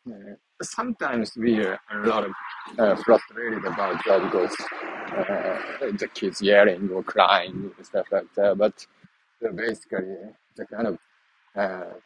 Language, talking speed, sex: English, 140 wpm, male